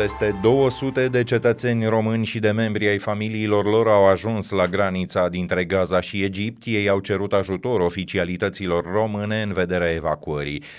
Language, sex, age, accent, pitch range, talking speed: Romanian, male, 30-49, native, 90-110 Hz, 155 wpm